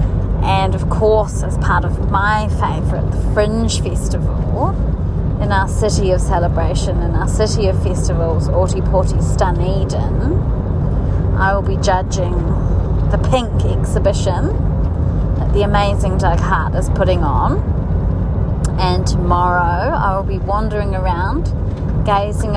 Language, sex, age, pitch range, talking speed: English, female, 30-49, 80-90 Hz, 125 wpm